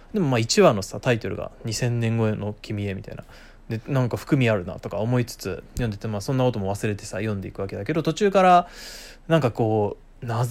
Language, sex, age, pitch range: Japanese, male, 20-39, 110-185 Hz